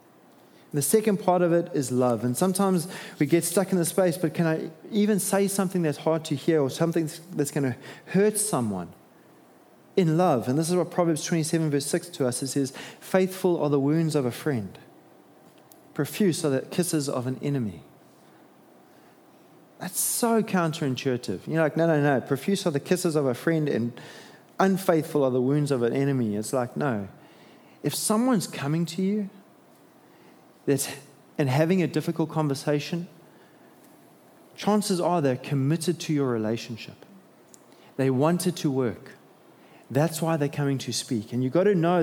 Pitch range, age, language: 130-175 Hz, 20-39, English